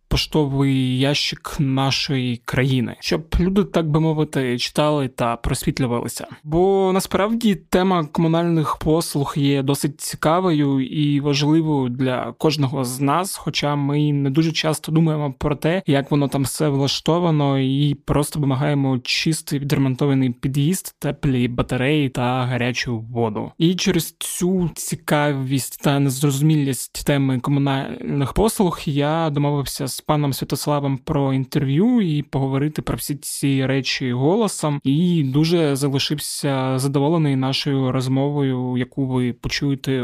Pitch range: 135-155 Hz